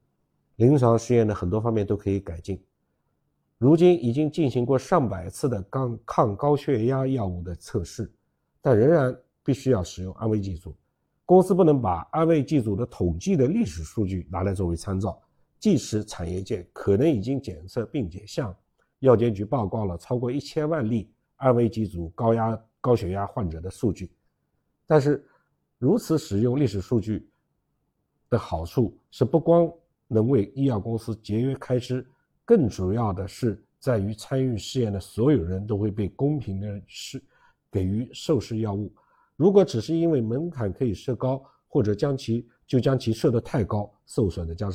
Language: Chinese